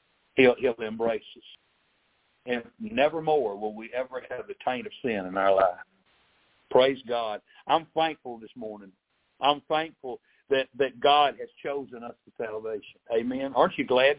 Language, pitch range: English, 140-195 Hz